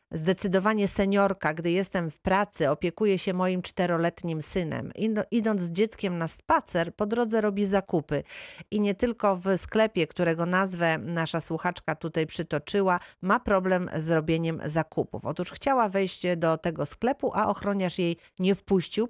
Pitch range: 155-190 Hz